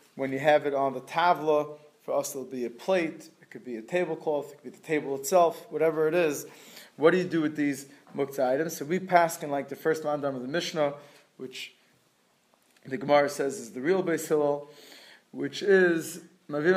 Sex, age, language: male, 20-39, English